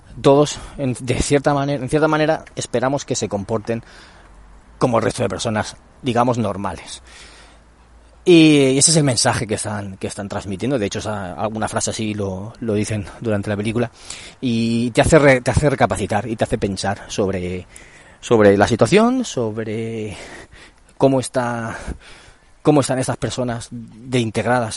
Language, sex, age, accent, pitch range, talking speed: Spanish, male, 30-49, Spanish, 105-130 Hz, 155 wpm